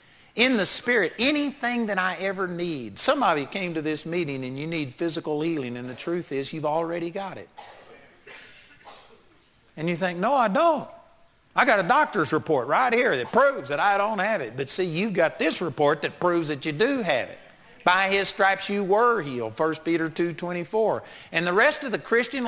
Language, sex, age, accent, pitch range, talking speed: English, male, 50-69, American, 145-205 Hz, 200 wpm